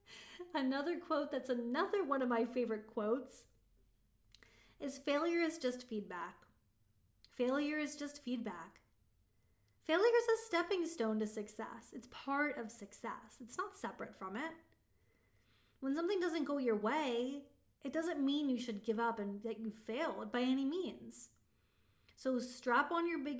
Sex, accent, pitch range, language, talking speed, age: female, American, 215-280 Hz, English, 150 wpm, 20-39